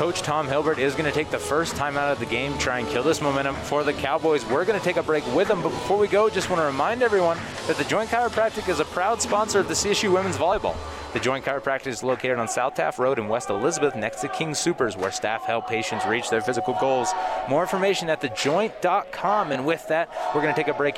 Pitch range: 125-180 Hz